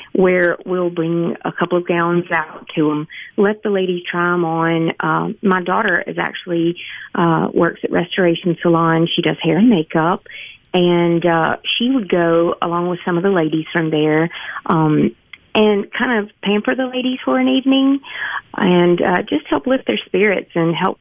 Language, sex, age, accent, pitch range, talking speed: English, female, 40-59, American, 165-210 Hz, 180 wpm